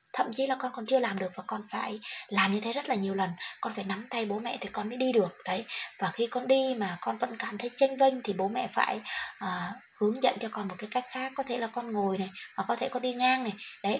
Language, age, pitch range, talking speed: Vietnamese, 20-39, 195-245 Hz, 290 wpm